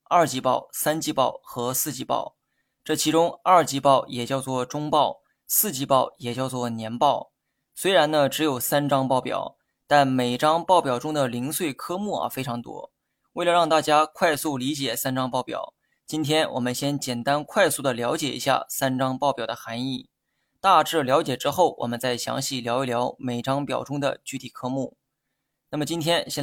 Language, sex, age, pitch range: Chinese, male, 20-39, 130-160 Hz